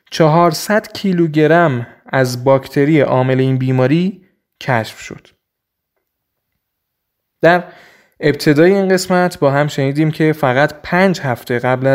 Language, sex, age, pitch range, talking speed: Persian, male, 20-39, 135-170 Hz, 105 wpm